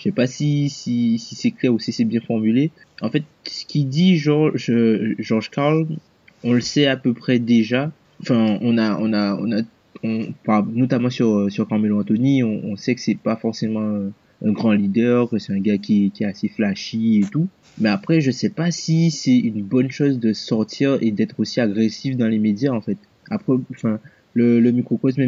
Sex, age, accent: male, 20-39, French